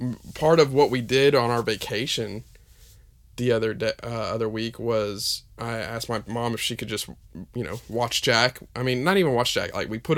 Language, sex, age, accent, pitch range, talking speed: English, male, 20-39, American, 105-135 Hz, 210 wpm